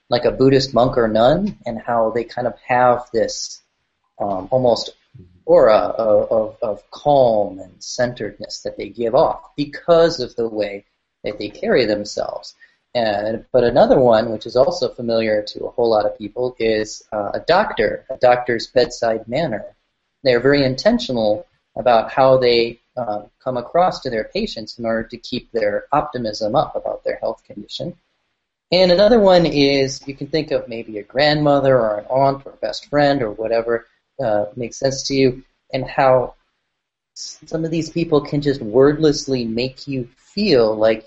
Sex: male